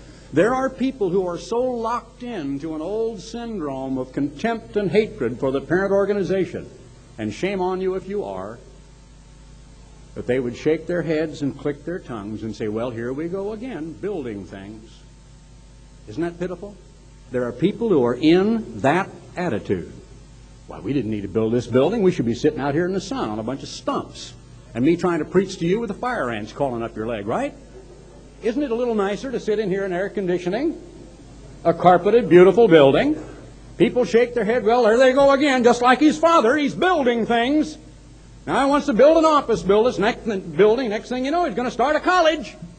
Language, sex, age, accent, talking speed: English, male, 60-79, American, 210 wpm